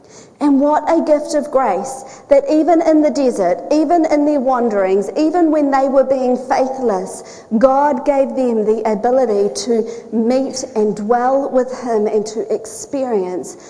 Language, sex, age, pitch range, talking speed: English, female, 40-59, 215-285 Hz, 155 wpm